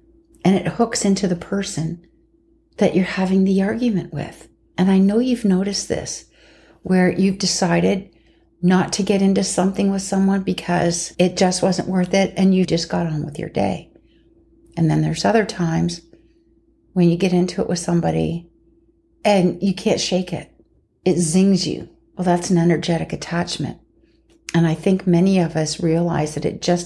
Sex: female